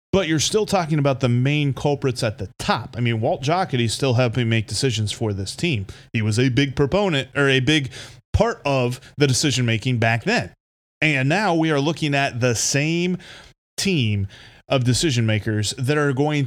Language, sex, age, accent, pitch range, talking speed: English, male, 30-49, American, 120-155 Hz, 180 wpm